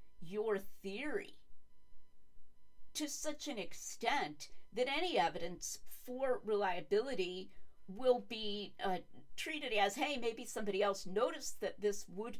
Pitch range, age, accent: 195-270 Hz, 50-69, American